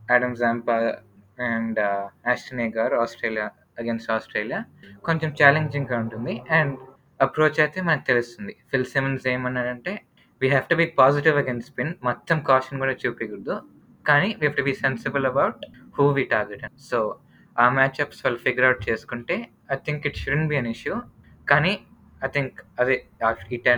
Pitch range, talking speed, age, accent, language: 115-140 Hz, 175 wpm, 20-39, native, Telugu